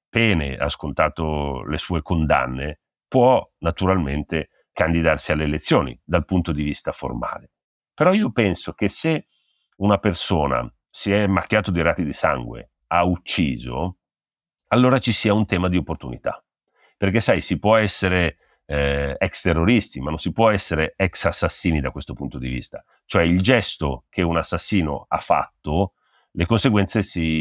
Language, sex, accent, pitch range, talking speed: Italian, male, native, 75-100 Hz, 155 wpm